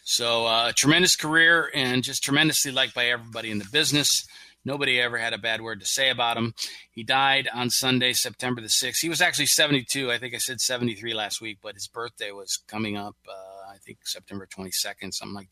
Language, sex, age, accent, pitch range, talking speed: English, male, 30-49, American, 105-125 Hz, 215 wpm